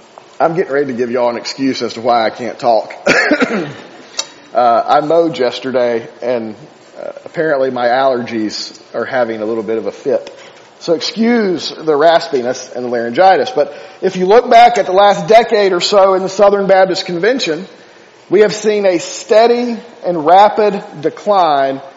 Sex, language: male, English